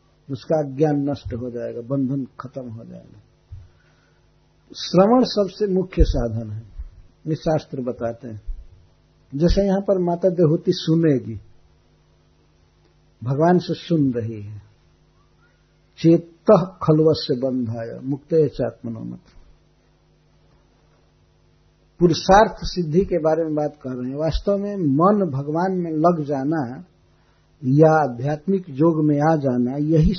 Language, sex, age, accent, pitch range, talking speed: Hindi, male, 60-79, native, 135-175 Hz, 120 wpm